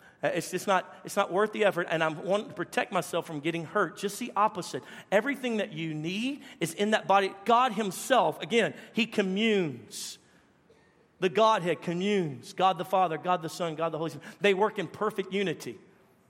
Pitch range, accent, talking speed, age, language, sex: 180-230 Hz, American, 190 wpm, 40-59, English, male